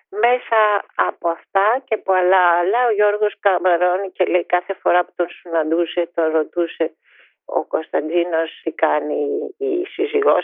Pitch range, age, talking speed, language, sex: 160-220 Hz, 40-59, 145 wpm, Greek, female